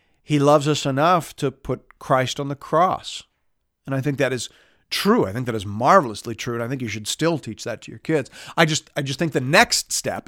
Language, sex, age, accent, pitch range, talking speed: English, male, 50-69, American, 110-150 Hz, 240 wpm